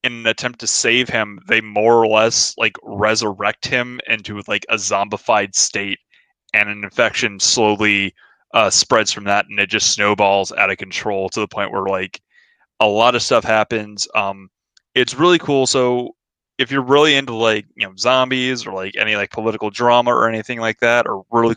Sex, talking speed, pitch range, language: male, 190 wpm, 110-140 Hz, English